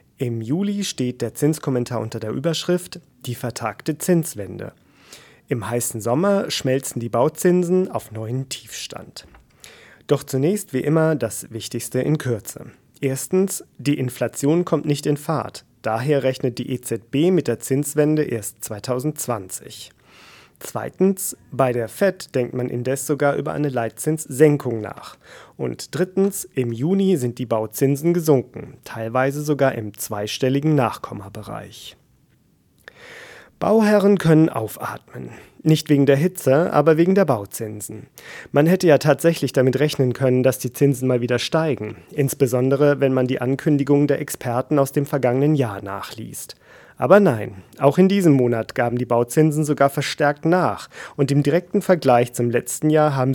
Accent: German